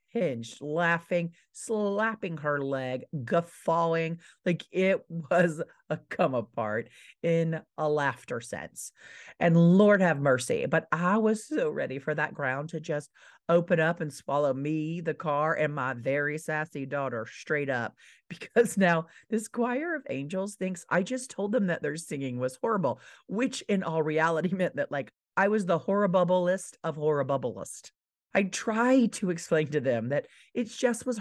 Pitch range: 155-230 Hz